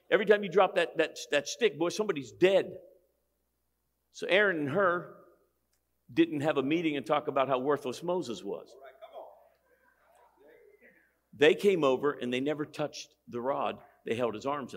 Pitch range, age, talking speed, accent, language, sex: 120-180 Hz, 50-69, 155 wpm, American, English, male